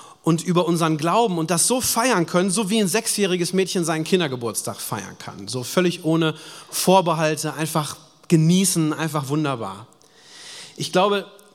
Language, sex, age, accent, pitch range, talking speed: German, male, 30-49, German, 140-175 Hz, 145 wpm